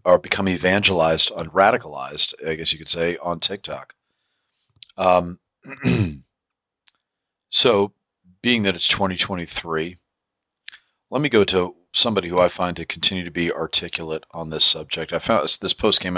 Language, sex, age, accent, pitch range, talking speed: English, male, 40-59, American, 80-90 Hz, 145 wpm